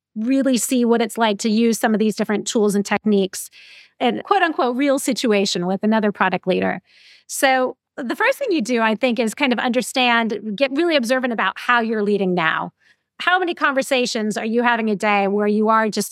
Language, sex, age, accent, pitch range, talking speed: English, female, 30-49, American, 205-255 Hz, 200 wpm